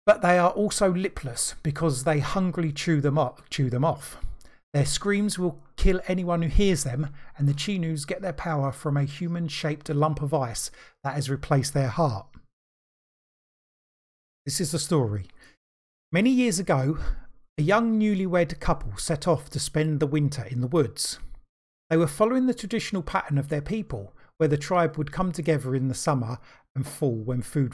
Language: English